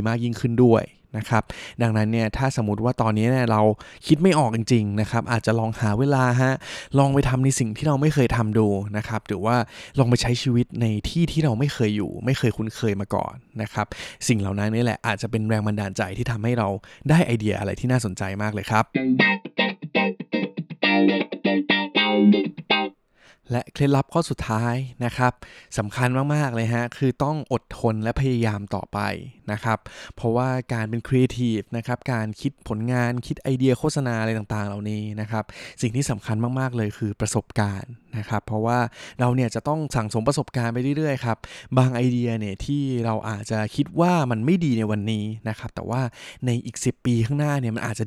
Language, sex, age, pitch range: Thai, male, 20-39, 110-130 Hz